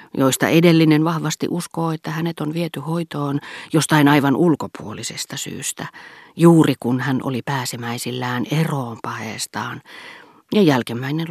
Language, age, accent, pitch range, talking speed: Finnish, 40-59, native, 120-160 Hz, 115 wpm